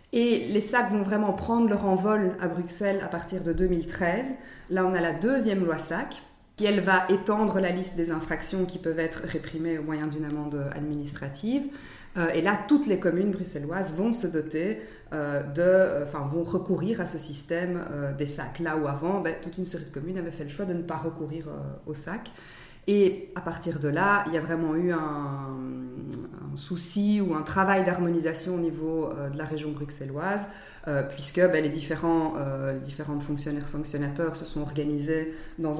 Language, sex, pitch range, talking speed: French, female, 150-180 Hz, 185 wpm